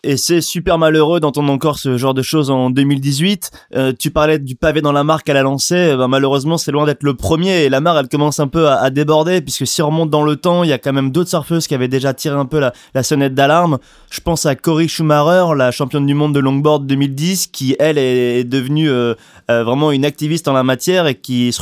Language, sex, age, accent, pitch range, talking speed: French, male, 20-39, French, 130-155 Hz, 255 wpm